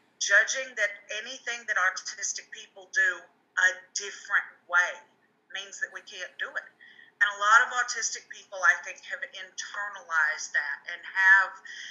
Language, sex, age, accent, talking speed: English, female, 40-59, American, 145 wpm